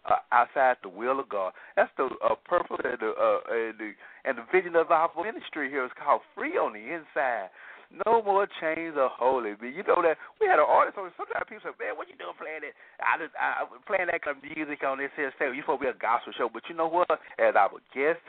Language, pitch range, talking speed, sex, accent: English, 145-200 Hz, 255 wpm, male, American